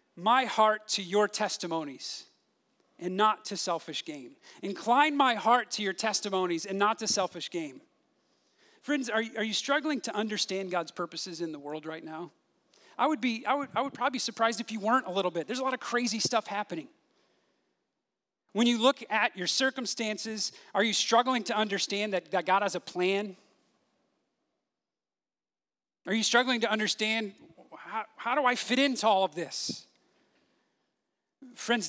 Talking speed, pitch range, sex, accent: 170 wpm, 175-230 Hz, male, American